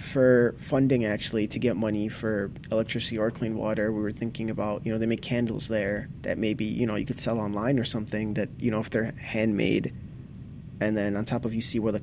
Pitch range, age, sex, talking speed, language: 105-120 Hz, 20-39, male, 230 wpm, English